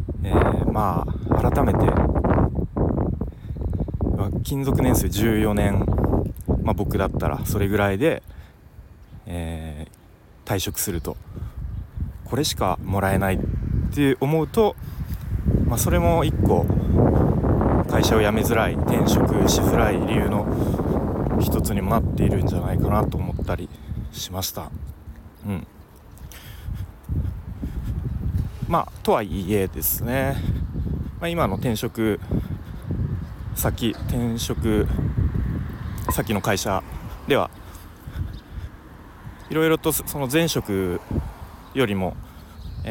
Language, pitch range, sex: Japanese, 85-110 Hz, male